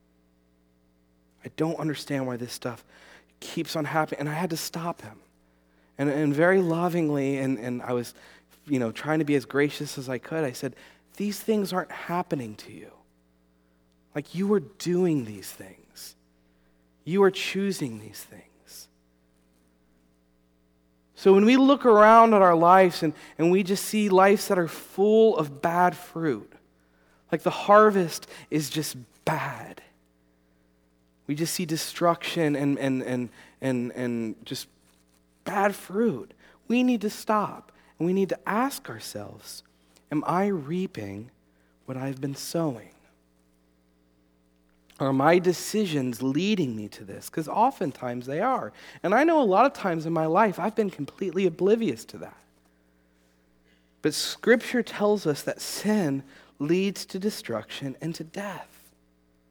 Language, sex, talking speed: English, male, 145 wpm